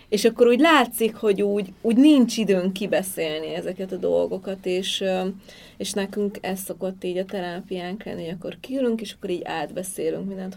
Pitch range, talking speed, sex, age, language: 175-215 Hz, 170 wpm, female, 30-49, Hungarian